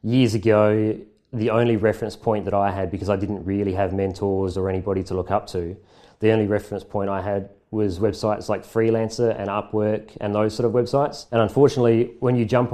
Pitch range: 100-115 Hz